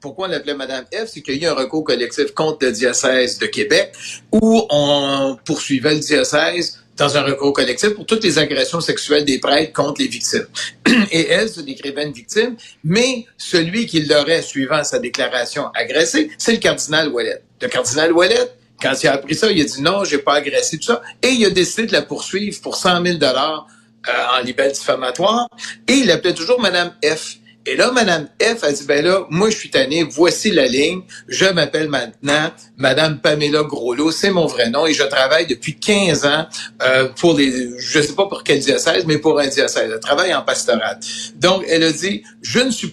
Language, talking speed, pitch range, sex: French, 205 wpm, 145-210 Hz, male